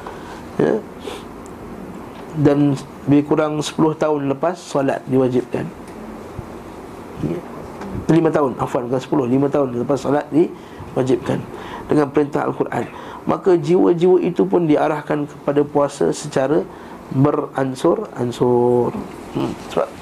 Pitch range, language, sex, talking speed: 135-160 Hz, Malay, male, 85 wpm